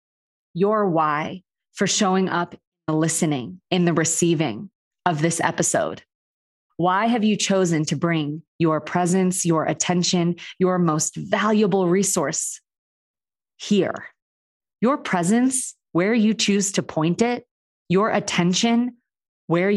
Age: 20-39